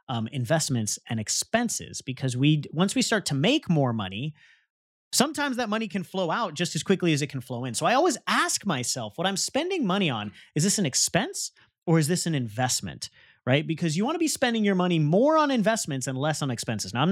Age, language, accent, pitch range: 30-49, English, American, 125-200 Hz